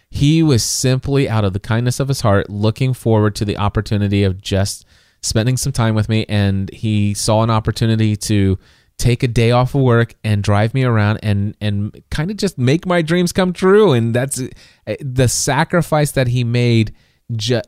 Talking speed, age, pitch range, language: 190 wpm, 30-49, 105-130 Hz, English